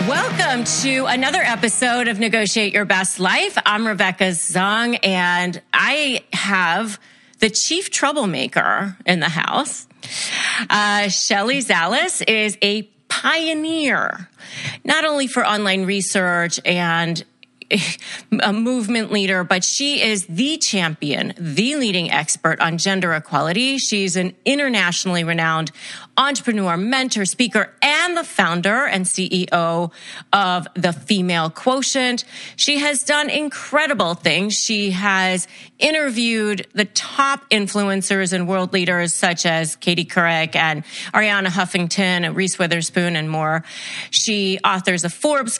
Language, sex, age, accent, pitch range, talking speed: English, female, 30-49, American, 175-235 Hz, 120 wpm